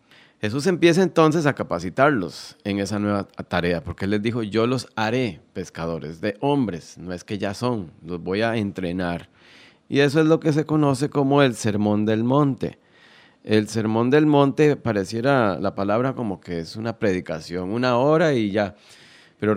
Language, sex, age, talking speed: Spanish, male, 30-49, 175 wpm